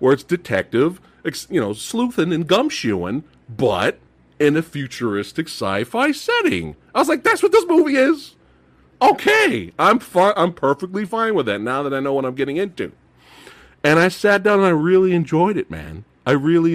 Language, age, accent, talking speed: English, 40-59, American, 175 wpm